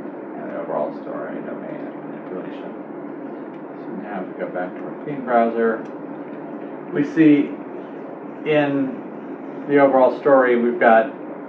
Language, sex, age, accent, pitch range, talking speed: English, male, 40-59, American, 110-155 Hz, 120 wpm